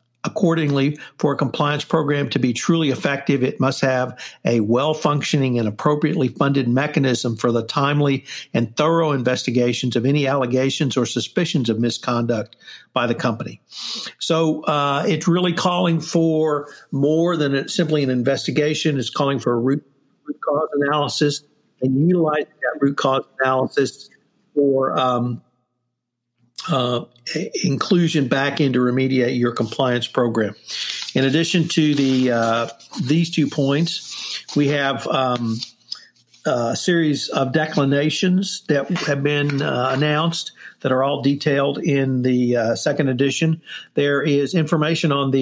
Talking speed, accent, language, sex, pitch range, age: 135 wpm, American, English, male, 130-155 Hz, 50-69